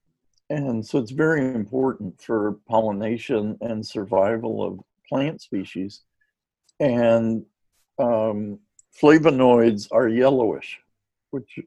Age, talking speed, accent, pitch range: 60-79, 95 wpm, American, 105-135 Hz